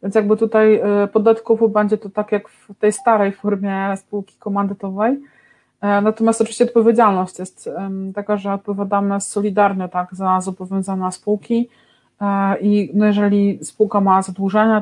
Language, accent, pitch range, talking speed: Polish, native, 195-220 Hz, 130 wpm